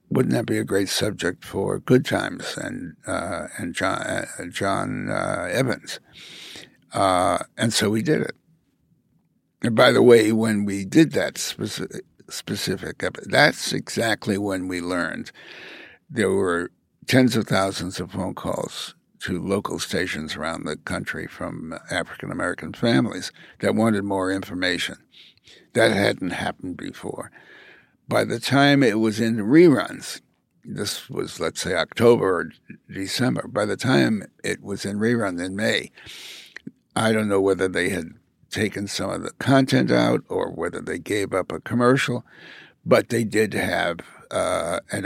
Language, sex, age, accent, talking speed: English, male, 60-79, American, 150 wpm